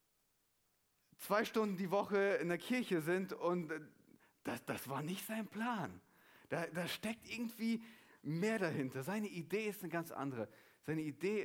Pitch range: 135-180 Hz